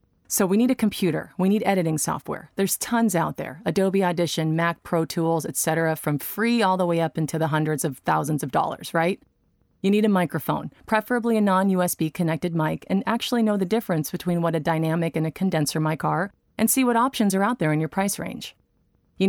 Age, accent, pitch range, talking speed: 30-49, American, 165-215 Hz, 210 wpm